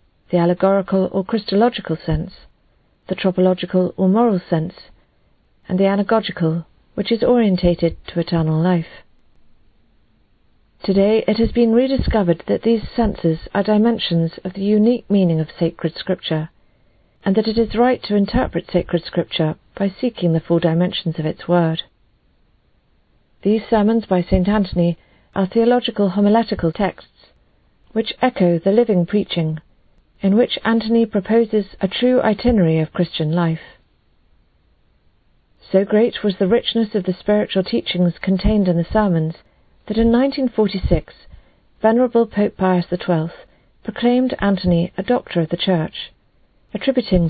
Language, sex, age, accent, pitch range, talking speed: English, female, 50-69, British, 165-220 Hz, 135 wpm